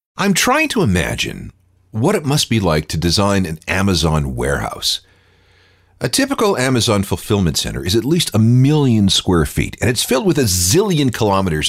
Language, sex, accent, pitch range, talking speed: English, male, American, 90-135 Hz, 170 wpm